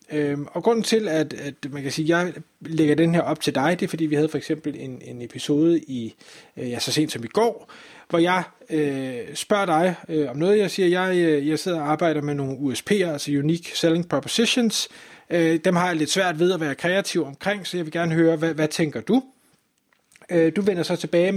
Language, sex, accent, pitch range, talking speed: Danish, male, native, 150-180 Hz, 230 wpm